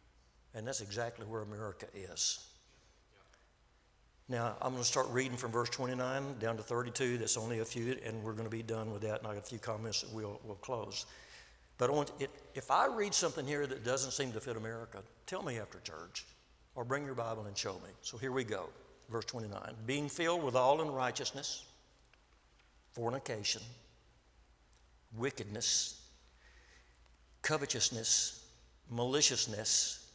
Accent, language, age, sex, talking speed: American, English, 60-79, male, 160 wpm